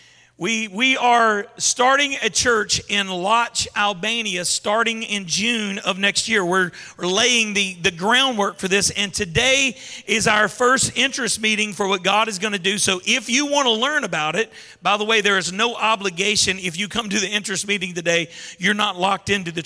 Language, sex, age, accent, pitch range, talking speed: English, male, 40-59, American, 185-230 Hz, 200 wpm